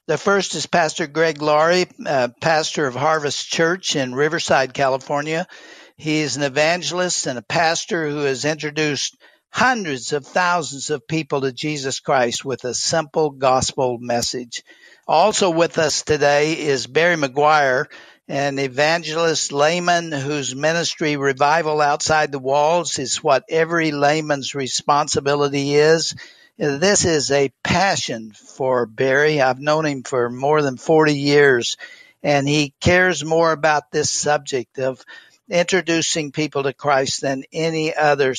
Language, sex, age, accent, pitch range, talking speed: English, male, 60-79, American, 140-165 Hz, 140 wpm